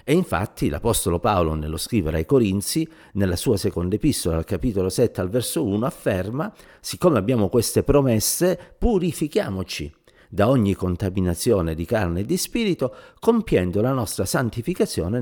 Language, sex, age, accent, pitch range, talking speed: Italian, male, 50-69, native, 90-125 Hz, 140 wpm